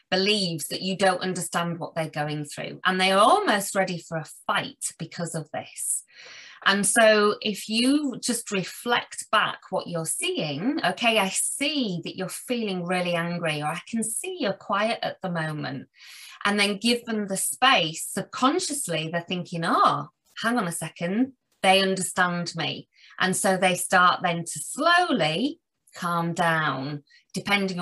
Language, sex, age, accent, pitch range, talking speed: English, female, 30-49, British, 165-215 Hz, 160 wpm